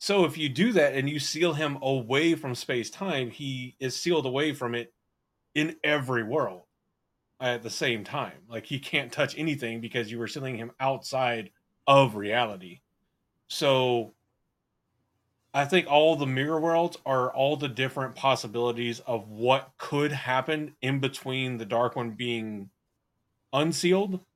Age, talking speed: 30-49, 155 wpm